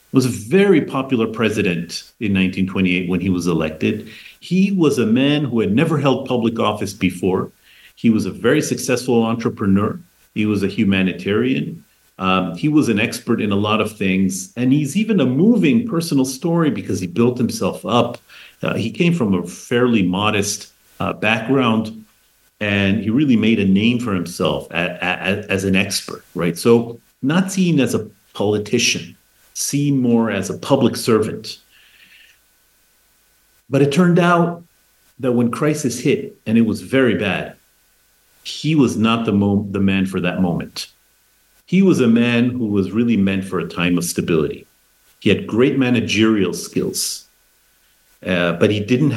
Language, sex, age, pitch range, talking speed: English, male, 40-59, 95-130 Hz, 160 wpm